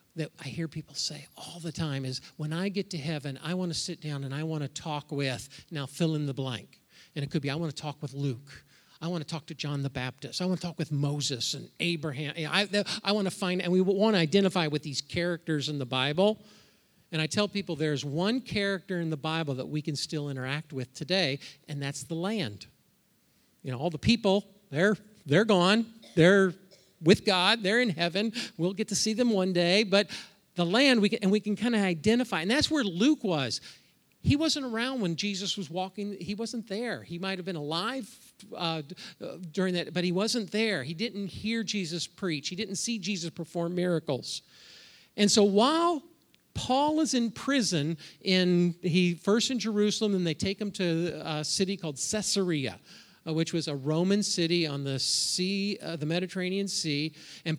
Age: 50-69